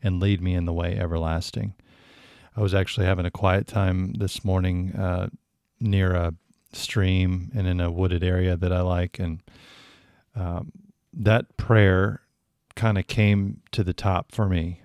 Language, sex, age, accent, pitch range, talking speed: English, male, 40-59, American, 90-105 Hz, 160 wpm